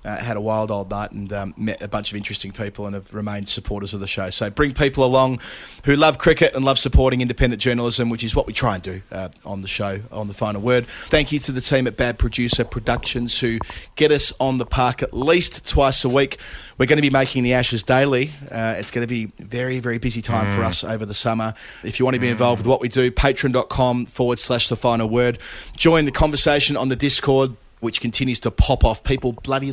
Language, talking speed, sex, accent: English, 240 wpm, male, Australian